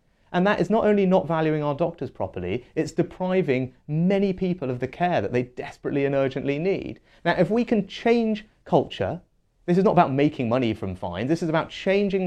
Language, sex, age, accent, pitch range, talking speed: English, male, 30-49, British, 130-195 Hz, 200 wpm